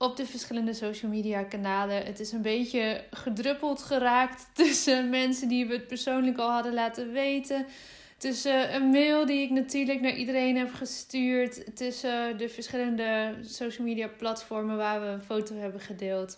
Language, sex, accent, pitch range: Dutch, female, Dutch, 210-260 Hz